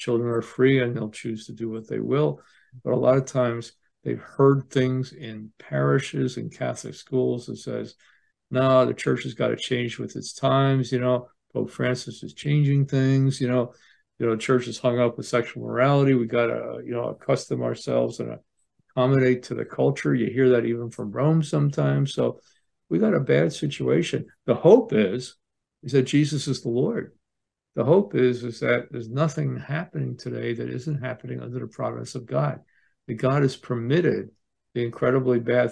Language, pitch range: English, 120-135 Hz